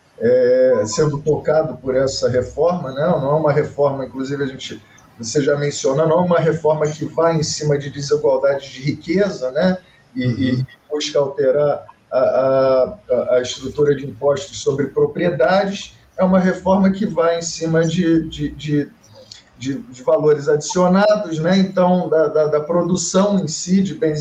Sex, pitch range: male, 145-190 Hz